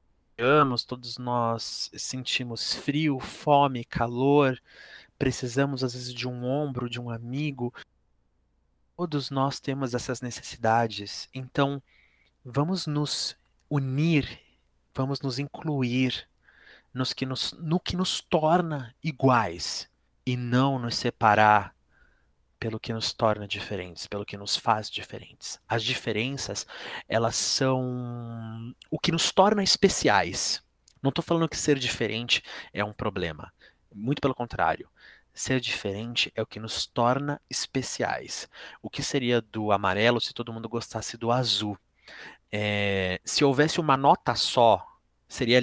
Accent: Brazilian